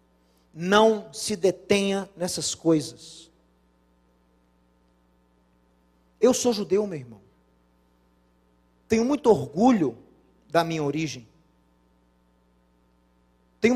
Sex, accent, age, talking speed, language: male, Brazilian, 40-59, 75 wpm, Portuguese